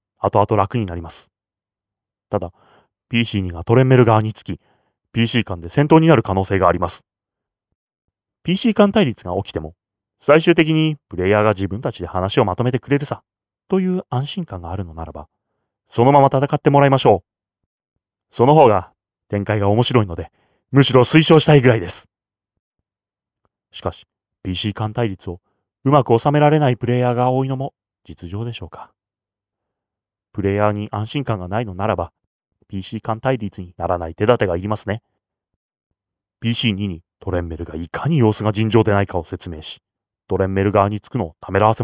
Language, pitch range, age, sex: Japanese, 95-125 Hz, 30-49, male